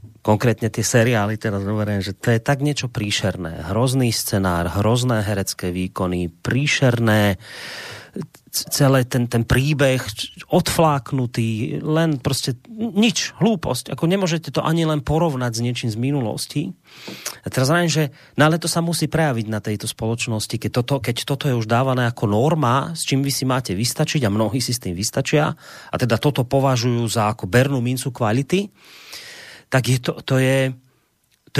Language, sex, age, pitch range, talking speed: Slovak, male, 30-49, 115-155 Hz, 155 wpm